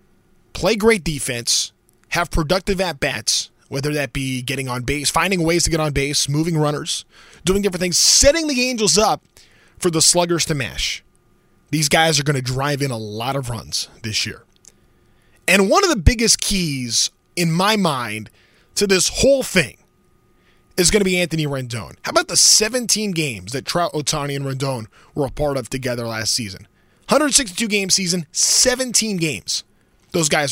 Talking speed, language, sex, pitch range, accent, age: 170 wpm, English, male, 130-200 Hz, American, 20-39